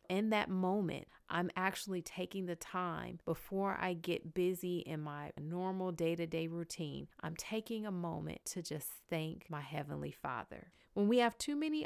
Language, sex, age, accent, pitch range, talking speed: English, female, 30-49, American, 160-200 Hz, 160 wpm